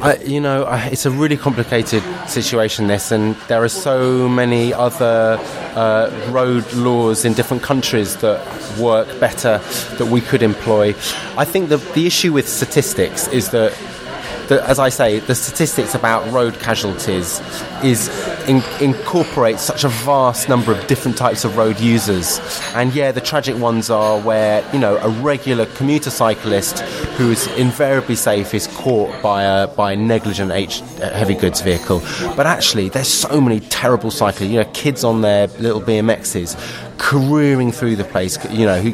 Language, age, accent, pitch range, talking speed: English, 20-39, British, 105-130 Hz, 165 wpm